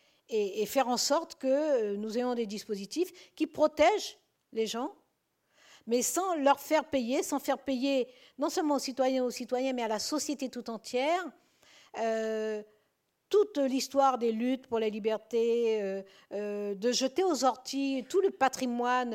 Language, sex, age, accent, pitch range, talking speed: French, female, 50-69, French, 205-280 Hz, 155 wpm